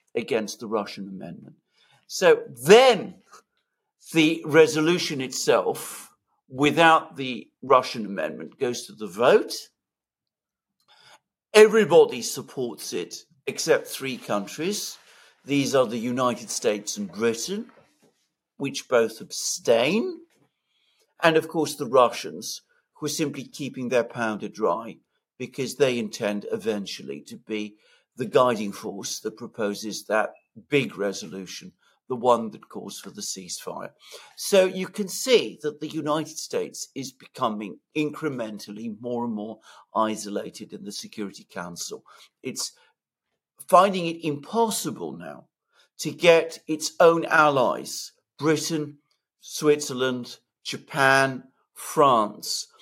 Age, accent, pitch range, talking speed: 60-79, British, 120-165 Hz, 110 wpm